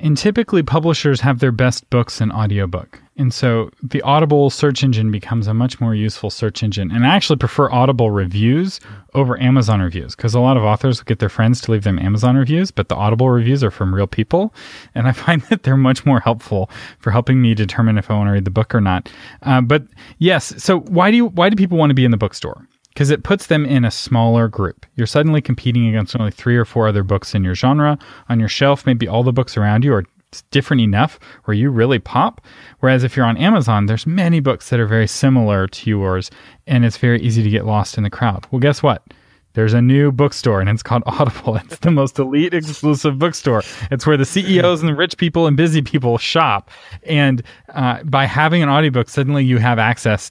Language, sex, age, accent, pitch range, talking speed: English, male, 30-49, American, 110-145 Hz, 225 wpm